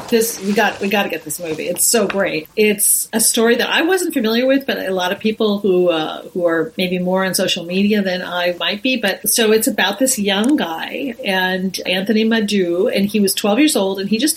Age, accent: 40-59, American